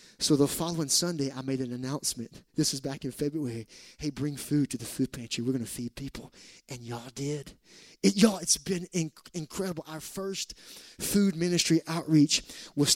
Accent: American